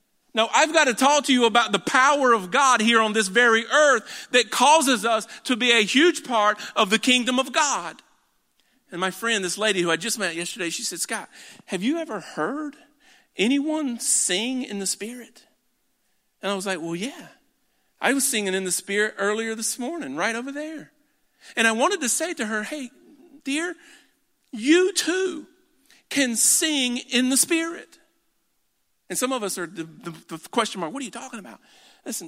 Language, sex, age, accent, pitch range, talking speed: English, male, 50-69, American, 185-280 Hz, 190 wpm